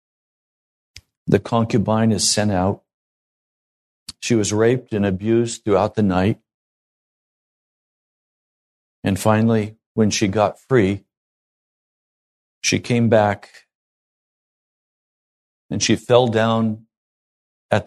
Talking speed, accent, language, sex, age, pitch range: 90 wpm, American, English, male, 50-69, 95-115 Hz